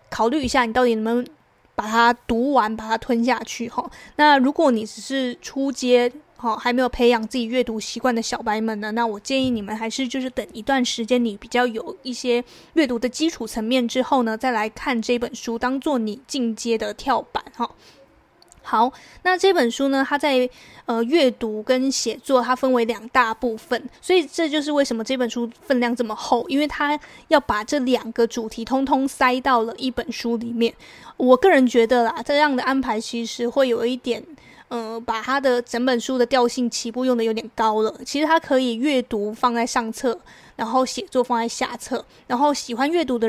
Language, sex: Chinese, female